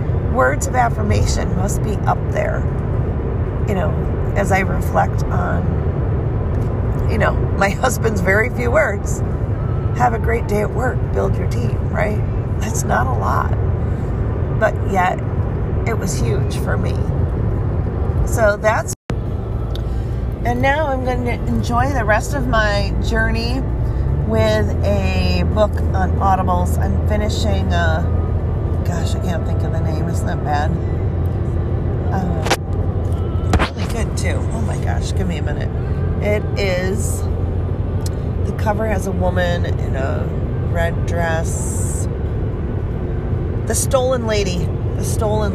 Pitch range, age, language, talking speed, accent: 90-110 Hz, 40-59, English, 130 wpm, American